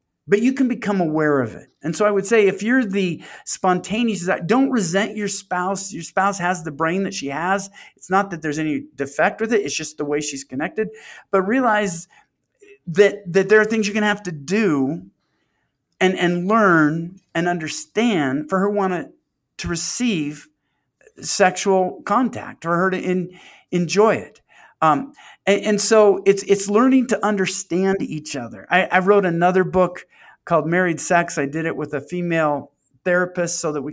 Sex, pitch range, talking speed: male, 150-195 Hz, 185 wpm